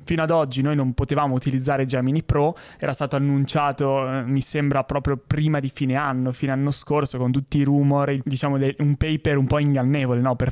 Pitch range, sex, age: 130-150 Hz, male, 20-39